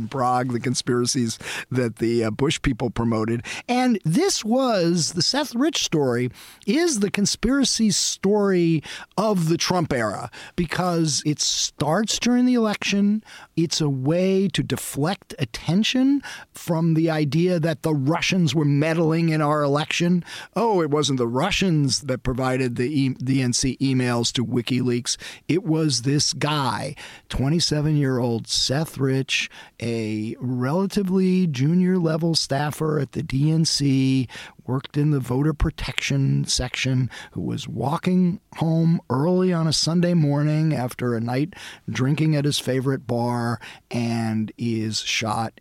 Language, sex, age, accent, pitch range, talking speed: English, male, 40-59, American, 125-170 Hz, 135 wpm